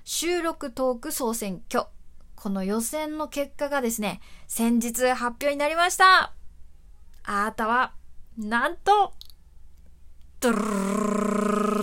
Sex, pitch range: female, 210-285 Hz